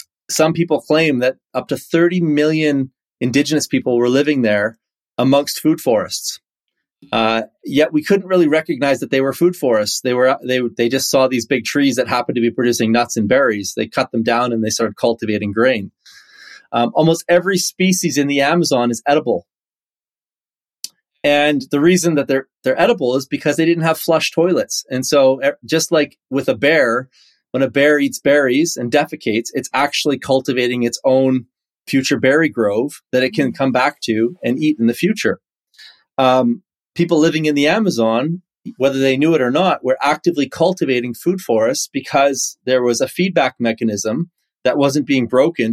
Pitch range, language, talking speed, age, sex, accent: 125-160 Hz, English, 180 wpm, 30-49, male, American